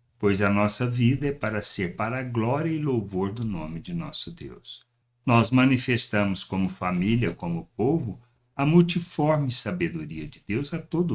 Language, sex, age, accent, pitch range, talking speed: Portuguese, male, 60-79, Brazilian, 100-140 Hz, 160 wpm